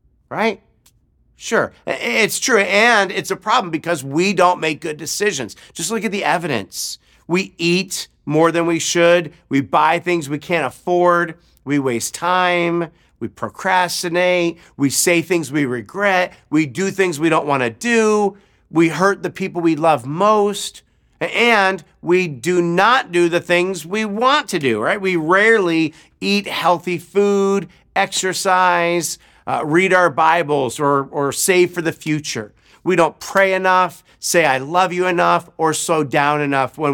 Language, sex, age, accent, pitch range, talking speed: English, male, 50-69, American, 145-185 Hz, 160 wpm